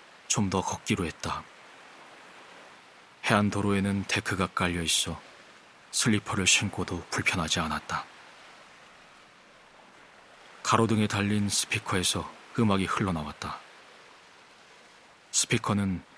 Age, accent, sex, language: 30-49, native, male, Korean